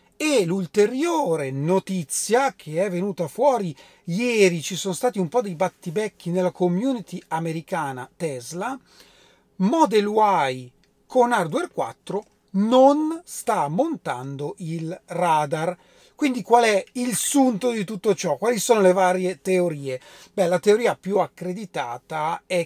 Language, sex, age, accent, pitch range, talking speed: Italian, male, 40-59, native, 165-215 Hz, 125 wpm